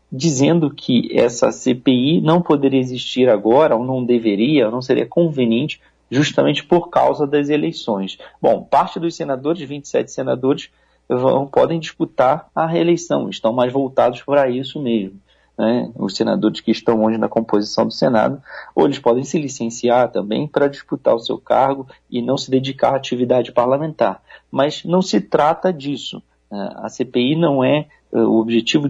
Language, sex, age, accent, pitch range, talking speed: Portuguese, male, 40-59, Brazilian, 115-145 Hz, 160 wpm